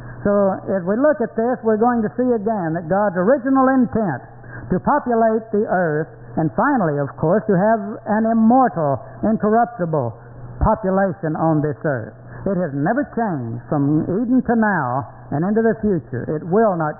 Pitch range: 150-225 Hz